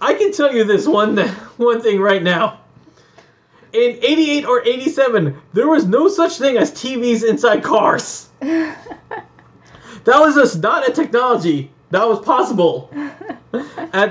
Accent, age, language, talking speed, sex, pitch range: American, 20-39, English, 140 wpm, male, 180-270 Hz